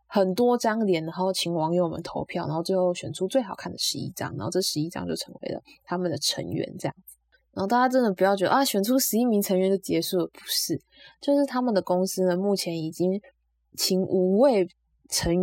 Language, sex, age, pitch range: Chinese, female, 20-39, 170-205 Hz